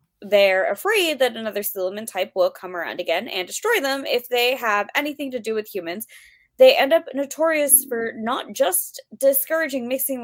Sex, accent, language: female, American, English